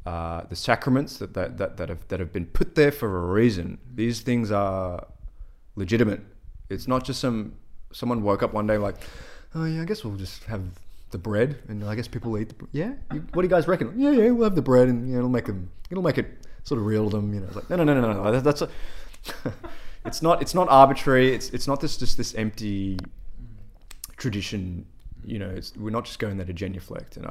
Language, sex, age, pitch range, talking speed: English, male, 20-39, 95-115 Hz, 235 wpm